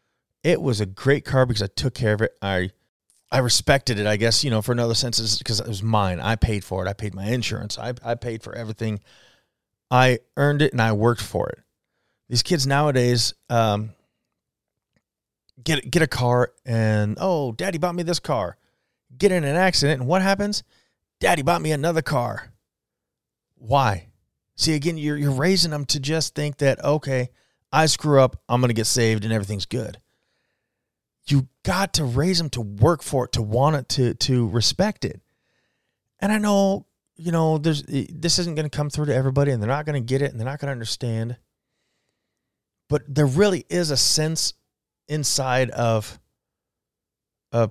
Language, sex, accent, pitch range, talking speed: English, male, American, 110-150 Hz, 185 wpm